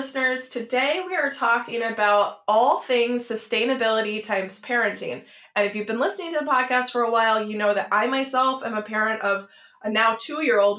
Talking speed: 190 wpm